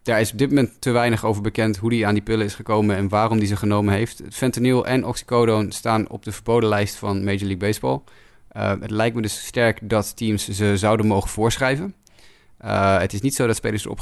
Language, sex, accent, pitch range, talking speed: Dutch, male, Dutch, 100-115 Hz, 230 wpm